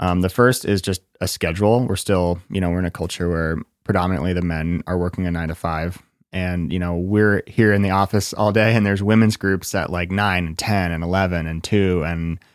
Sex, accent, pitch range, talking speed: male, American, 85-105 Hz, 235 wpm